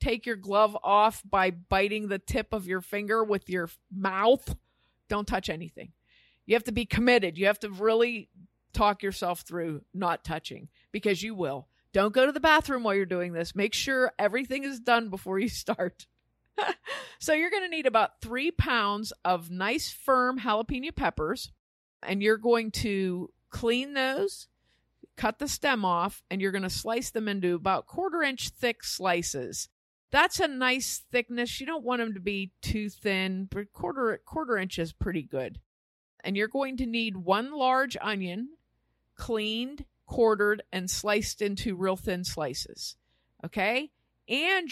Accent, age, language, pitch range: American, 50-69, English, 185-245 Hz